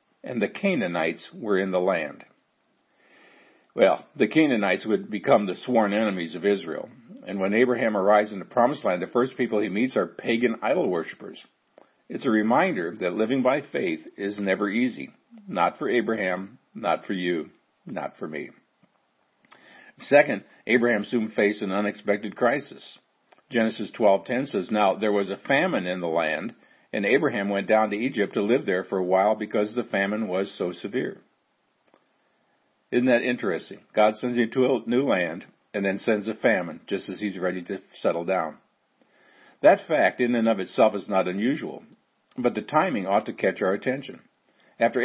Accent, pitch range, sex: American, 100-125 Hz, male